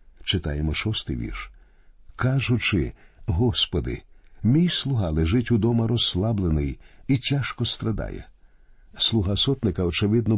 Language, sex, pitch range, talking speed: Ukrainian, male, 90-125 Hz, 95 wpm